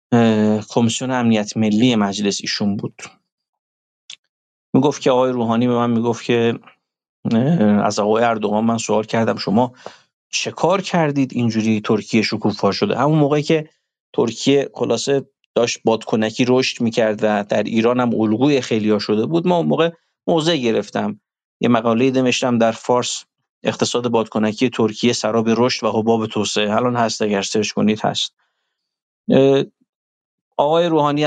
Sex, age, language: male, 50-69, Persian